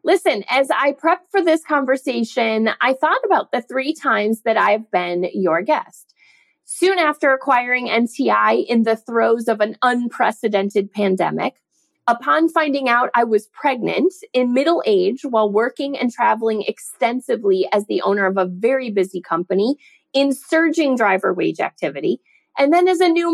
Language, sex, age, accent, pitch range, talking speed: English, female, 30-49, American, 210-305 Hz, 155 wpm